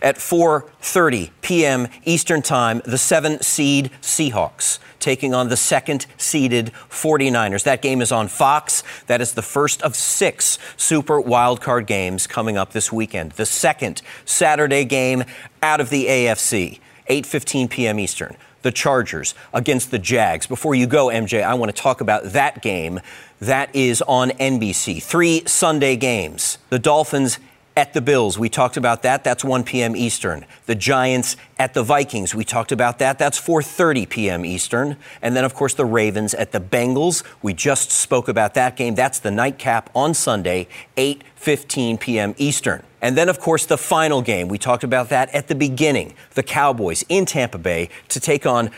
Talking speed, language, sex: 170 wpm, English, male